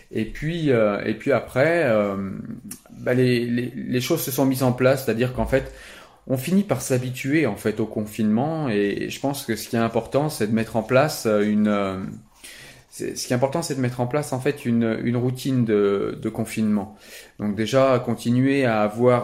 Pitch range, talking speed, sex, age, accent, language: 105-125 Hz, 205 wpm, male, 30-49, French, French